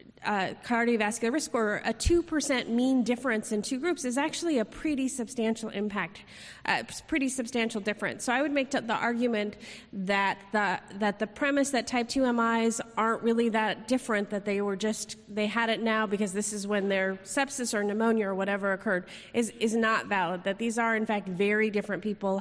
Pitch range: 205-255 Hz